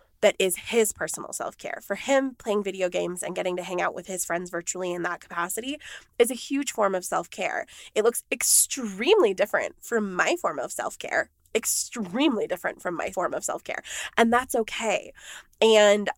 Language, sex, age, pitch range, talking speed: English, female, 20-39, 185-230 Hz, 180 wpm